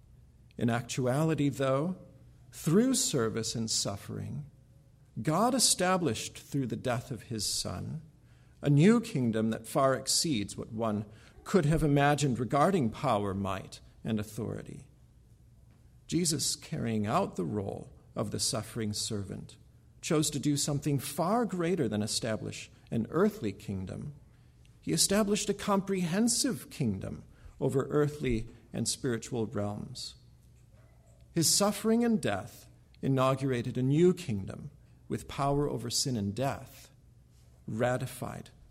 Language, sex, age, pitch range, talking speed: English, male, 50-69, 110-155 Hz, 120 wpm